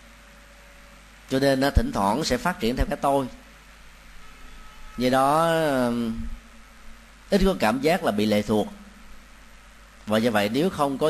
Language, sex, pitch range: Vietnamese, male, 120-190 Hz